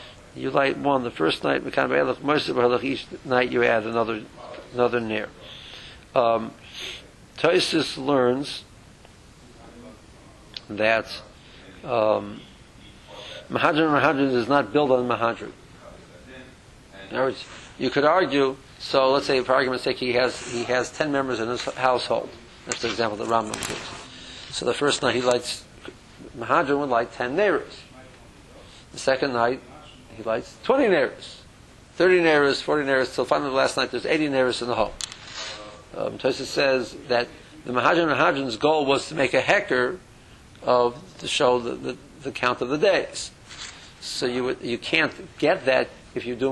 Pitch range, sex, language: 120-135 Hz, male, English